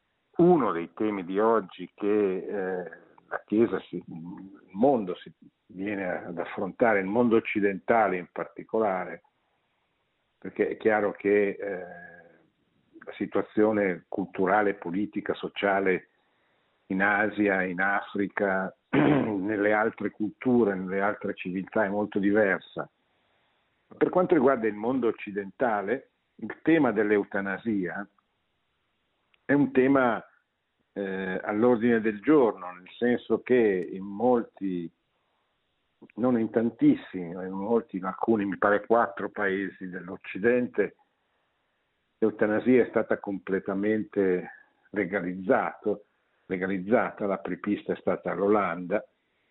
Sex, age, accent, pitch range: male, 60-79, native, 95-115 Hz